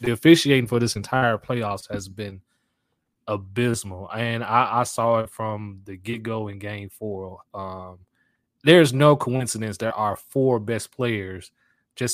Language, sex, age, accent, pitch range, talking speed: English, male, 20-39, American, 110-135 Hz, 150 wpm